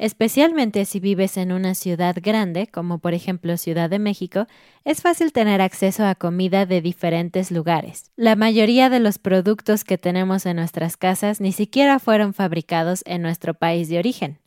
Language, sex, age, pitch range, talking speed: Spanish, female, 20-39, 175-225 Hz, 170 wpm